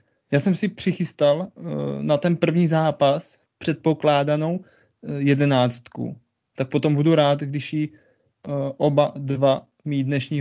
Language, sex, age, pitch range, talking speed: Czech, male, 20-39, 135-160 Hz, 125 wpm